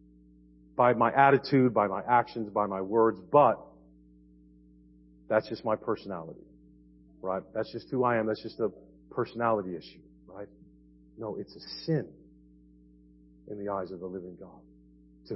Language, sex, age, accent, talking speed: English, male, 50-69, American, 150 wpm